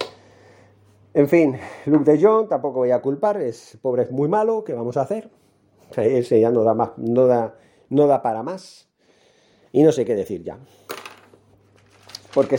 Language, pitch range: Spanish, 125-155 Hz